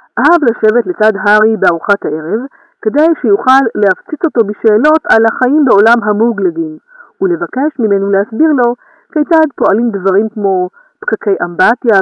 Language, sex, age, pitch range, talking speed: Hebrew, female, 40-59, 210-335 Hz, 125 wpm